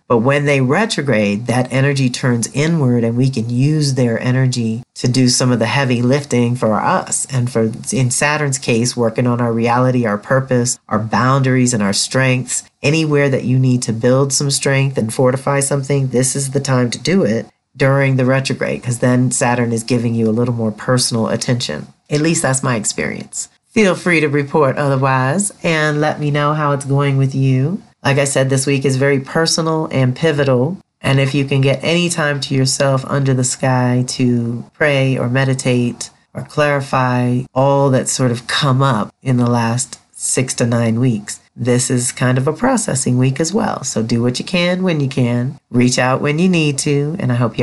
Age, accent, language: 40-59, American, English